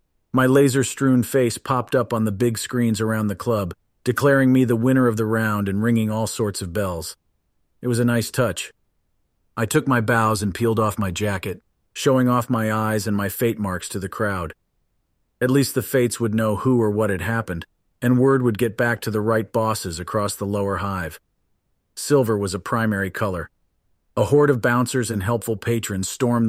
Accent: American